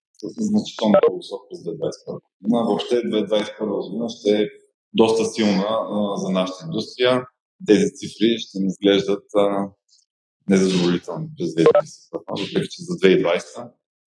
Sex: male